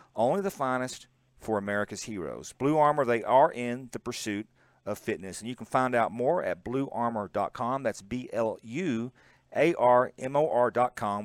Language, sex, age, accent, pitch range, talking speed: English, male, 40-59, American, 120-165 Hz, 135 wpm